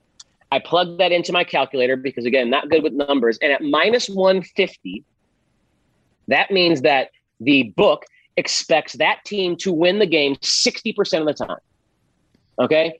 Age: 30-49